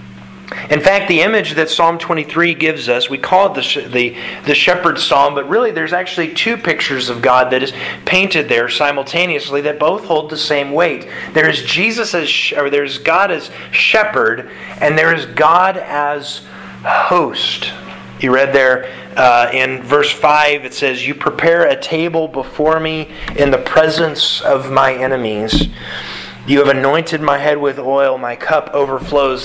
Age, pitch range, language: 30-49, 135-170 Hz, English